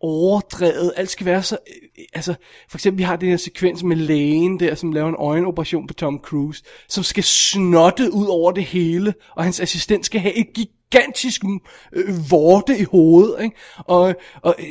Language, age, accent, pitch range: Danish, 20-39, native, 165-195 Hz